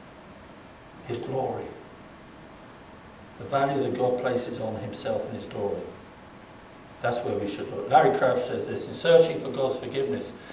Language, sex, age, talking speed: English, male, 60-79, 150 wpm